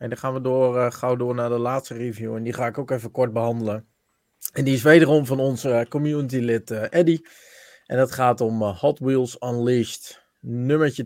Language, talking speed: Dutch, 215 wpm